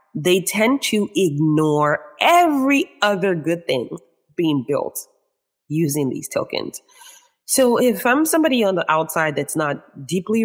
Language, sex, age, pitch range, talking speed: English, female, 20-39, 150-220 Hz, 130 wpm